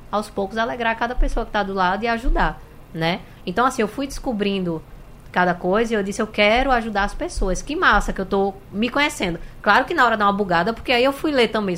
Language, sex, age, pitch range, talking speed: Portuguese, female, 20-39, 170-230 Hz, 240 wpm